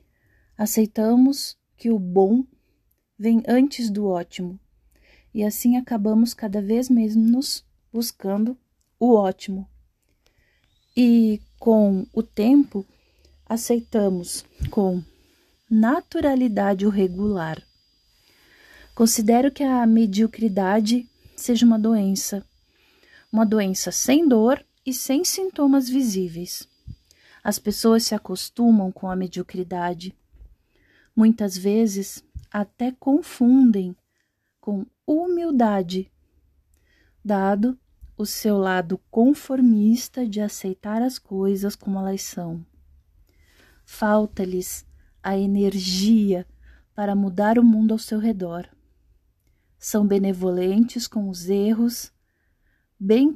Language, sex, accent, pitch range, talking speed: Portuguese, female, Brazilian, 190-235 Hz, 90 wpm